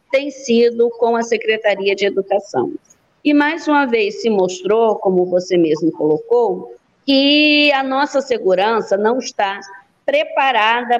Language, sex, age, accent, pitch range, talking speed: Portuguese, female, 50-69, Brazilian, 205-270 Hz, 130 wpm